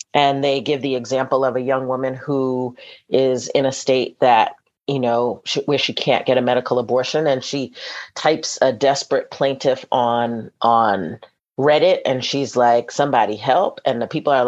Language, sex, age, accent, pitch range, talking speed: English, female, 40-59, American, 125-145 Hz, 175 wpm